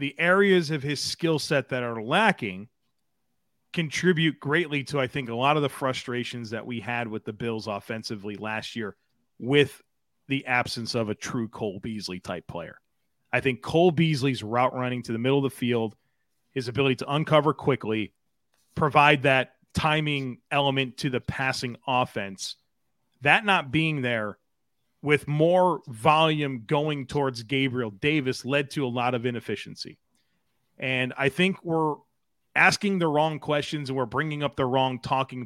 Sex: male